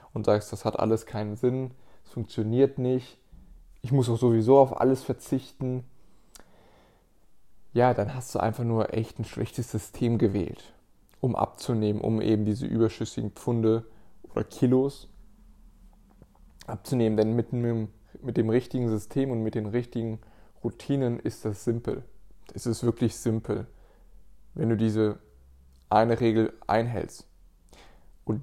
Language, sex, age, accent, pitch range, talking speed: German, male, 20-39, German, 110-130 Hz, 135 wpm